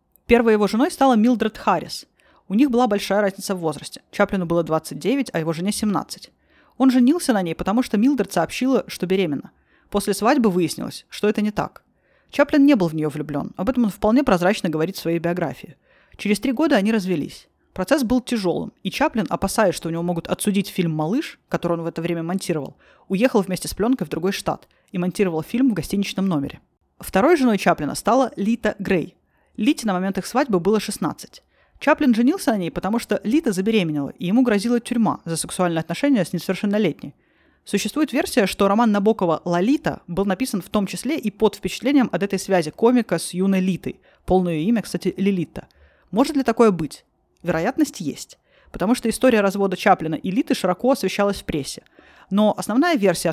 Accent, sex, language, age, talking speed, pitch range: native, female, Russian, 20-39, 185 wpm, 175-240 Hz